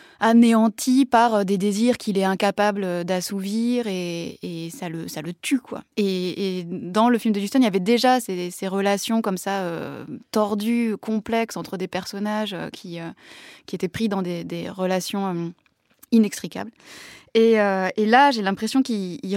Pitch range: 190-230 Hz